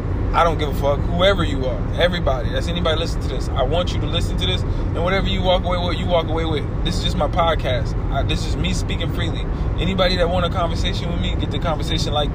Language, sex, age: English, male, 20-39